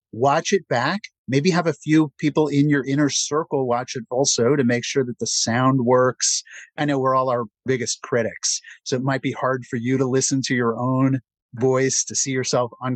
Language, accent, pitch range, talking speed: English, American, 120-145 Hz, 215 wpm